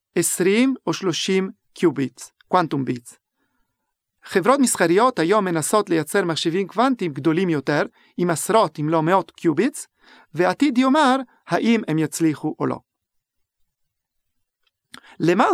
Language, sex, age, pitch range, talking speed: Hebrew, male, 40-59, 165-240 Hz, 110 wpm